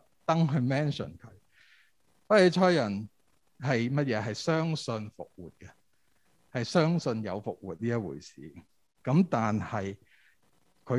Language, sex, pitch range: Chinese, male, 105-145 Hz